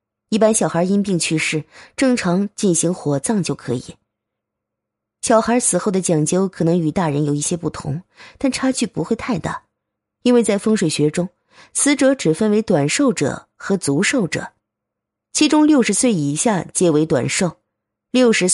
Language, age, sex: Chinese, 20-39, female